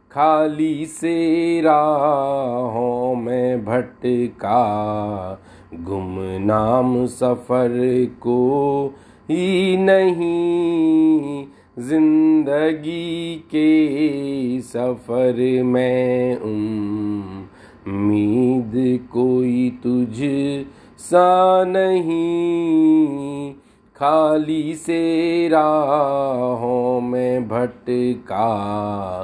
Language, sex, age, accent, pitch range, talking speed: Hindi, male, 40-59, native, 125-155 Hz, 55 wpm